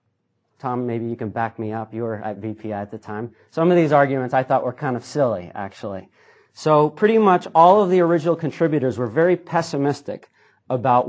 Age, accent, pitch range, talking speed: 40-59, American, 115-145 Hz, 200 wpm